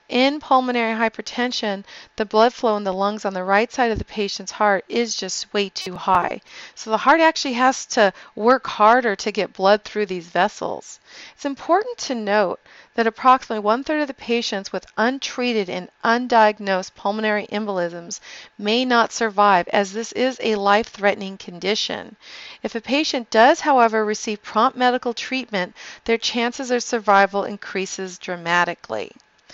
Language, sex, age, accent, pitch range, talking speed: English, female, 40-59, American, 205-245 Hz, 155 wpm